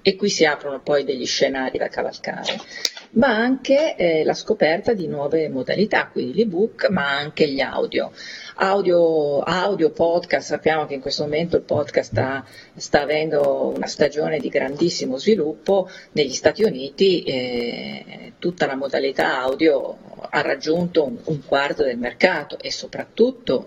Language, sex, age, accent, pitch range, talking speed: Italian, female, 40-59, native, 145-215 Hz, 145 wpm